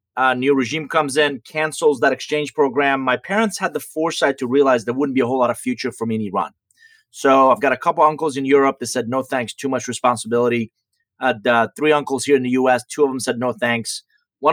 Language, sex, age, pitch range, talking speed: English, male, 30-49, 120-145 Hz, 235 wpm